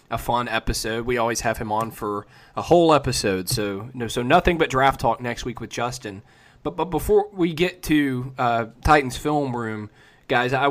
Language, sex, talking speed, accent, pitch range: English, male, 205 wpm, American, 115-145 Hz